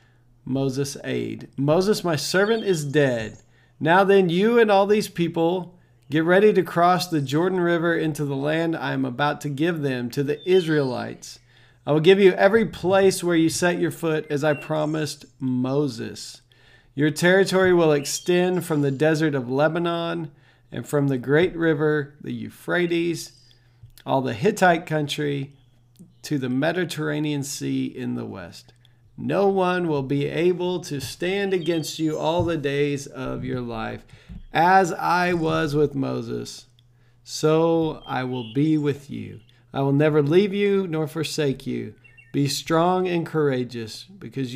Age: 40-59